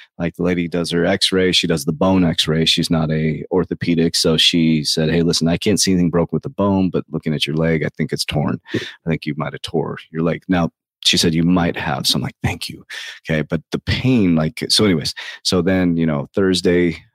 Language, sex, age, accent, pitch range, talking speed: English, male, 30-49, American, 80-90 Hz, 240 wpm